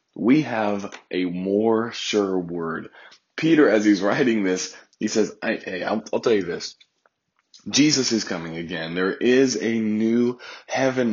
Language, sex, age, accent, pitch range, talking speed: English, male, 30-49, American, 95-115 Hz, 155 wpm